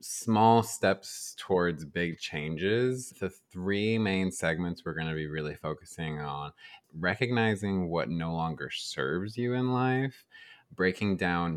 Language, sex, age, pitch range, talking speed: English, male, 20-39, 80-105 Hz, 135 wpm